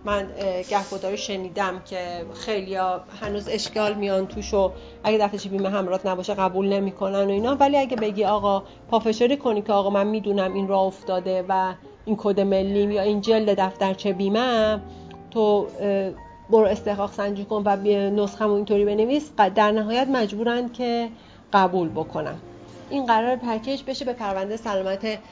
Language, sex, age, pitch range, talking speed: Persian, female, 40-59, 185-220 Hz, 150 wpm